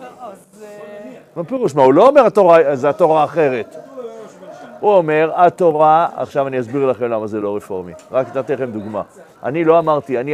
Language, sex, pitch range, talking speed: Hebrew, male, 145-210 Hz, 165 wpm